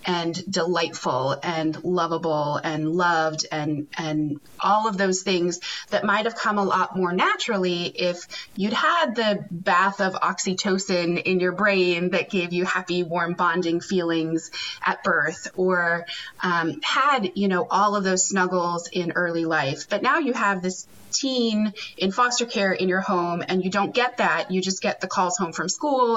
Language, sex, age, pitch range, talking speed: English, female, 30-49, 170-215 Hz, 175 wpm